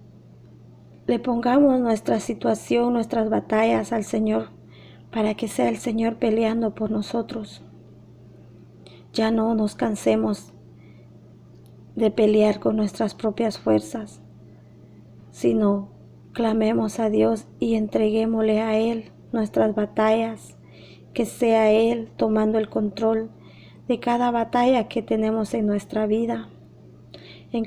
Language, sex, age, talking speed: Spanish, female, 30-49, 110 wpm